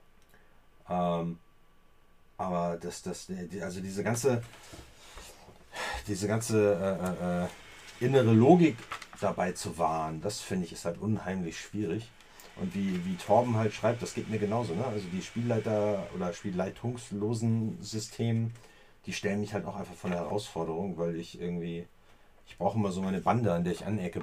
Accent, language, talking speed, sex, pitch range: German, German, 150 wpm, male, 90-115 Hz